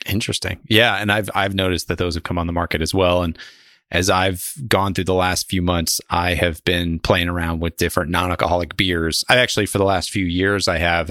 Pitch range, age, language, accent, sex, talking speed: 85-110 Hz, 30-49, English, American, male, 225 wpm